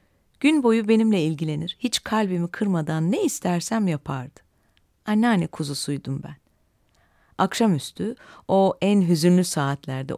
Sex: female